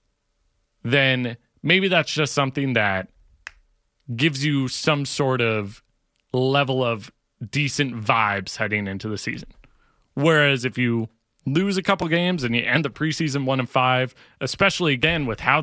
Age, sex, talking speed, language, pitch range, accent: 30-49, male, 145 wpm, English, 125-165 Hz, American